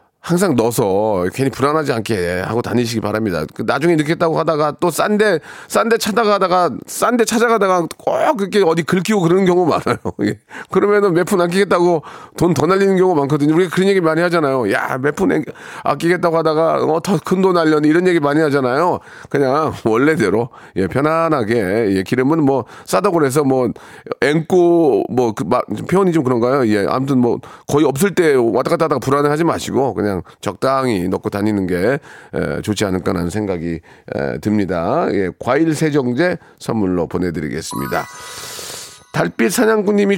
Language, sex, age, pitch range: Korean, male, 30-49, 130-180 Hz